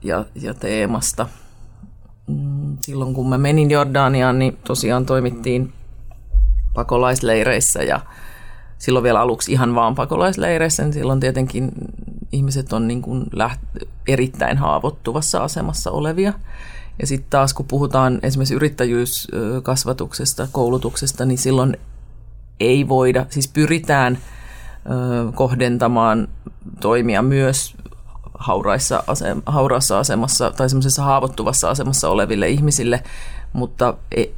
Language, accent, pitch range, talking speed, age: Finnish, native, 115-140 Hz, 100 wpm, 30-49